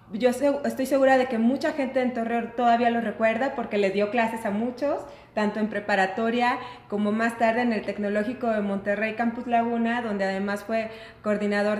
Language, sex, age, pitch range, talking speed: Spanish, female, 30-49, 210-255 Hz, 180 wpm